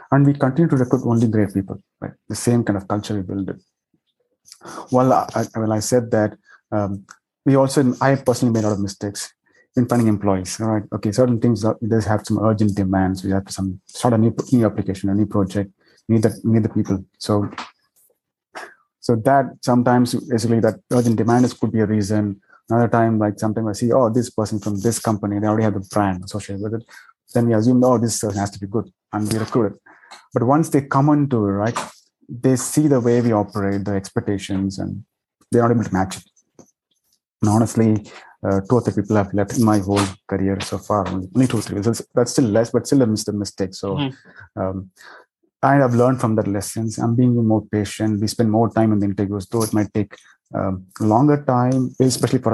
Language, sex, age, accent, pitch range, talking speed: English, male, 30-49, Indian, 100-120 Hz, 210 wpm